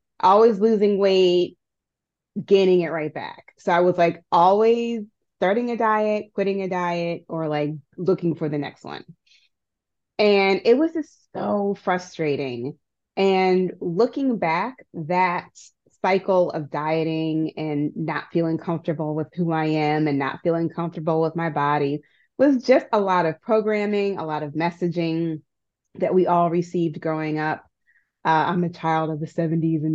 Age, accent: 20-39, American